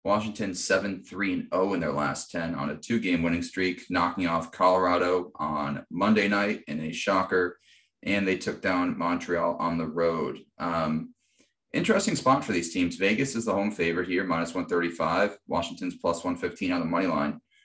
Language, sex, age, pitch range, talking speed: English, male, 30-49, 85-105 Hz, 165 wpm